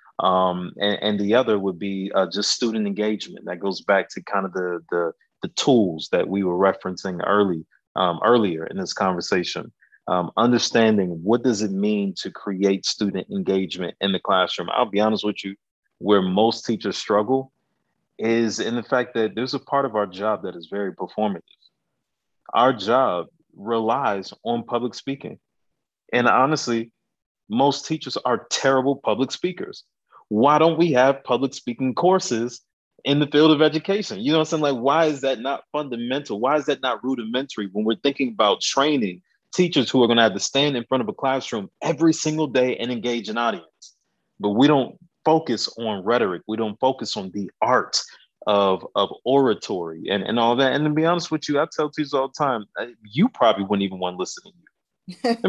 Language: English